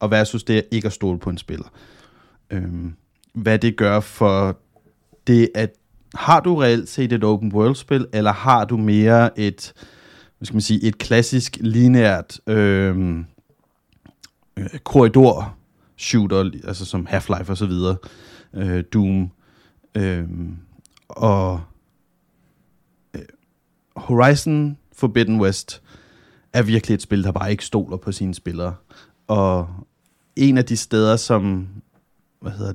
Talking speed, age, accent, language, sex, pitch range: 130 wpm, 30-49, native, Danish, male, 95-120 Hz